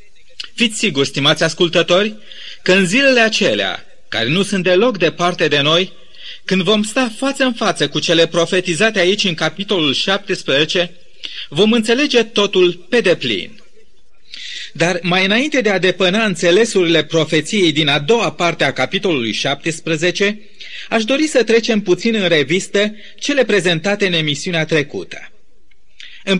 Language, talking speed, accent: Romanian, 135 wpm, native